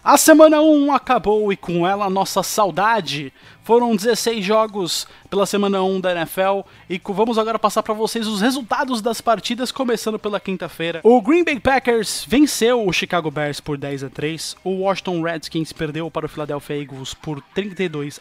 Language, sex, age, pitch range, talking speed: Portuguese, male, 20-39, 165-220 Hz, 180 wpm